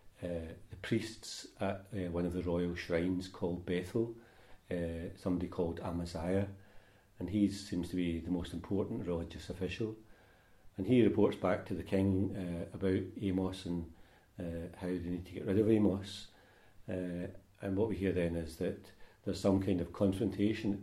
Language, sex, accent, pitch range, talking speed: English, male, British, 90-100 Hz, 175 wpm